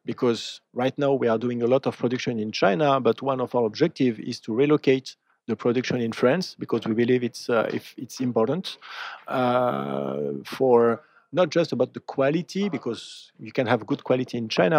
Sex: male